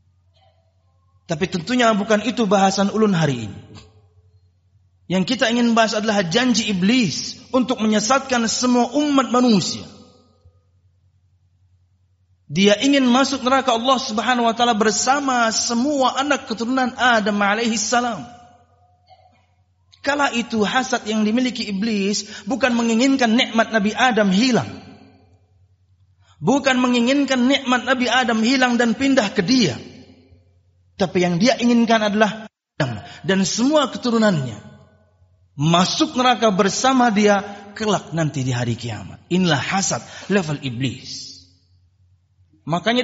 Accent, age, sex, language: native, 30-49, male, Indonesian